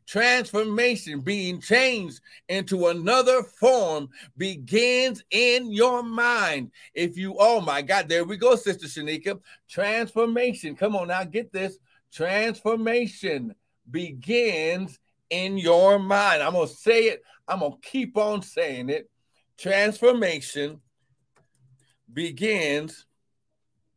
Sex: male